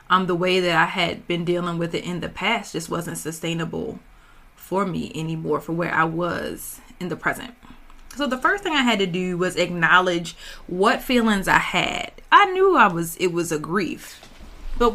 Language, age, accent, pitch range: English, 20-39, American, 175-245 Hz